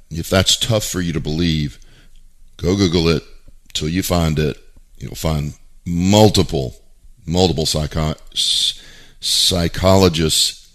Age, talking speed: 50-69, 110 wpm